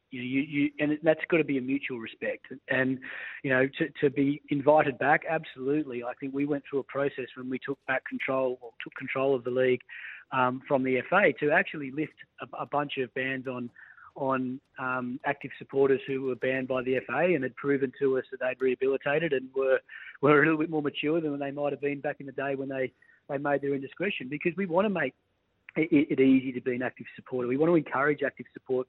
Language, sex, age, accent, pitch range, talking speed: English, male, 30-49, Australian, 130-150 Hz, 230 wpm